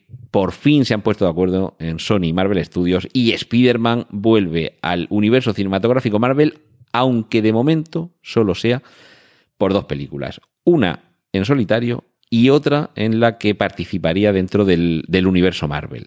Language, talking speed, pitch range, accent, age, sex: Spanish, 155 wpm, 85-120 Hz, Spanish, 40-59, male